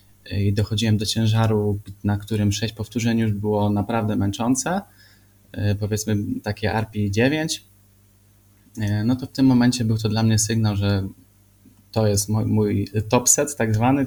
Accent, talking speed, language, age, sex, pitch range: native, 145 wpm, Polish, 20-39, male, 100-115 Hz